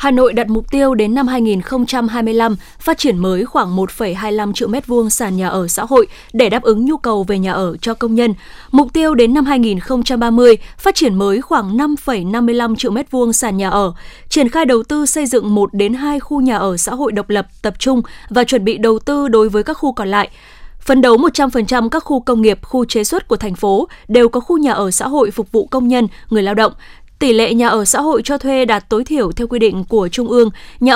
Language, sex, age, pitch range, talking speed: Vietnamese, female, 20-39, 215-265 Hz, 230 wpm